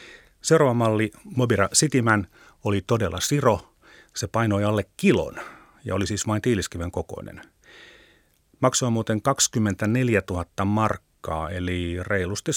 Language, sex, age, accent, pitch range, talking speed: Finnish, male, 30-49, native, 90-115 Hz, 115 wpm